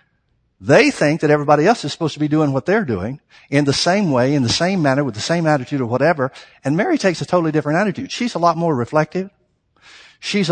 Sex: male